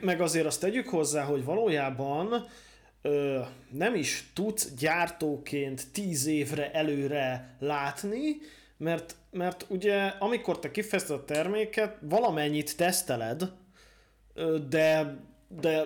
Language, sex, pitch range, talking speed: Hungarian, male, 145-185 Hz, 100 wpm